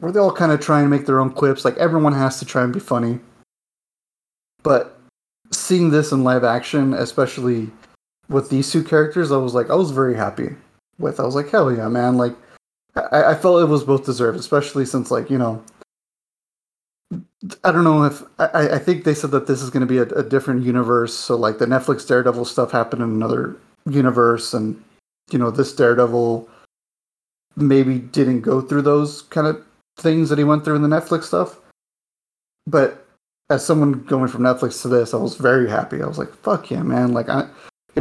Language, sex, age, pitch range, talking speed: English, male, 30-49, 125-155 Hz, 200 wpm